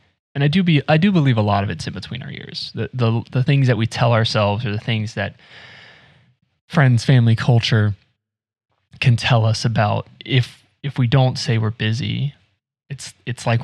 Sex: male